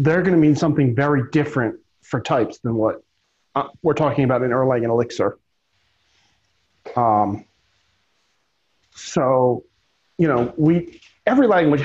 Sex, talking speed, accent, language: male, 125 wpm, American, English